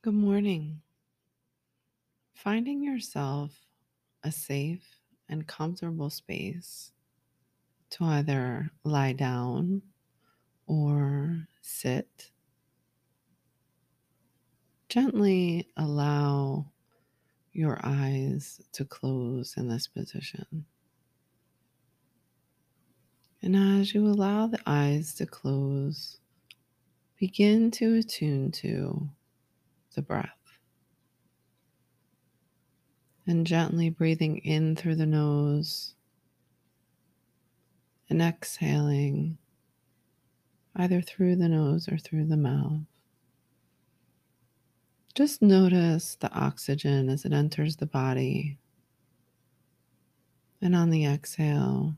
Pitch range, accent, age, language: 140-175 Hz, American, 30-49, English